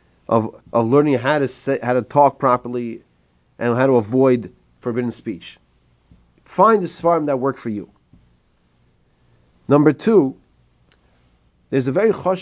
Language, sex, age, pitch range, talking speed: English, male, 30-49, 115-175 Hz, 140 wpm